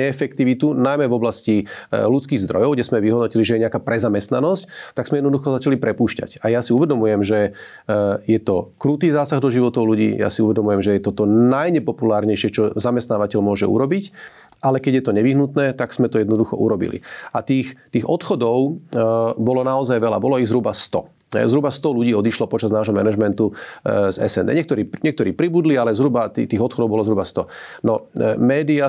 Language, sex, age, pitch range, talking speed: Slovak, male, 40-59, 110-135 Hz, 175 wpm